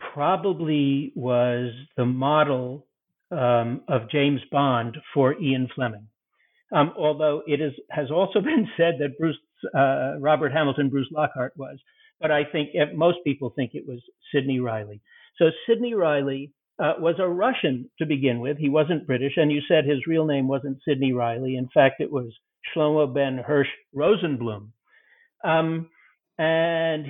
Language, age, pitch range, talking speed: English, 60-79, 130-160 Hz, 150 wpm